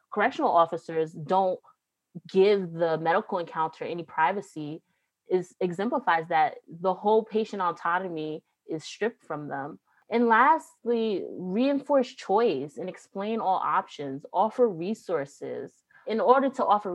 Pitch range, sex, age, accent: 155-200 Hz, female, 20-39, American